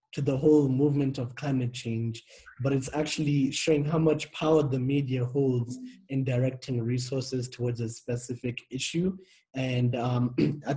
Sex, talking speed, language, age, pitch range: male, 150 wpm, English, 20-39, 120-140 Hz